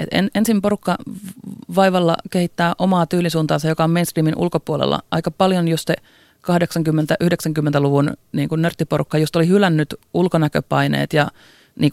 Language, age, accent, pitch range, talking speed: Finnish, 30-49, native, 150-175 Hz, 115 wpm